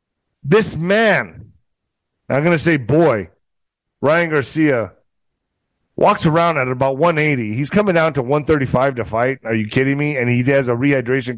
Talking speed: 160 wpm